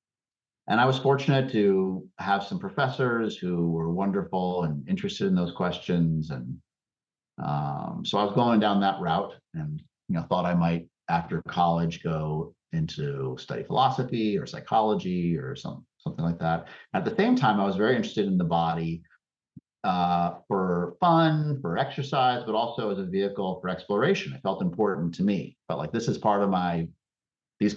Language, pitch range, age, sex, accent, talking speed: English, 85-120 Hz, 50-69, male, American, 175 wpm